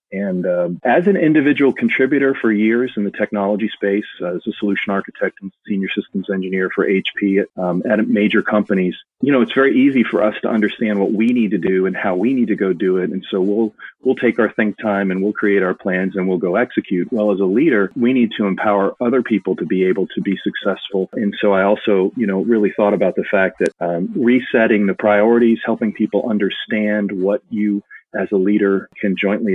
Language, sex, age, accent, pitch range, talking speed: English, male, 40-59, American, 95-115 Hz, 220 wpm